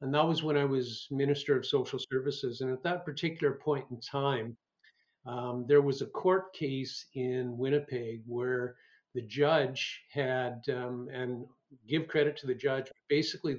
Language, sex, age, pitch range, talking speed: English, male, 50-69, 125-145 Hz, 165 wpm